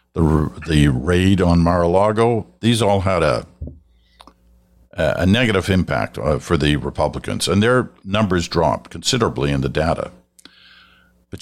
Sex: male